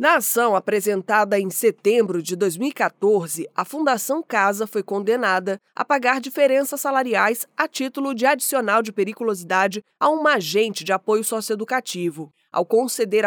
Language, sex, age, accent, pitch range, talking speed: Portuguese, female, 20-39, Brazilian, 205-270 Hz, 135 wpm